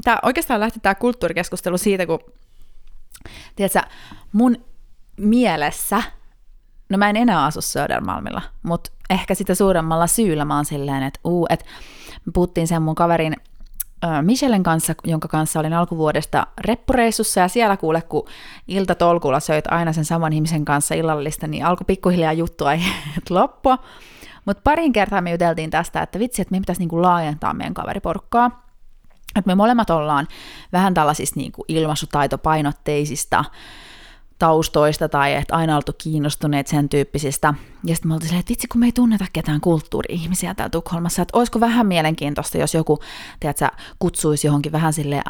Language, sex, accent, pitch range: Finnish, female, native, 155-190 Hz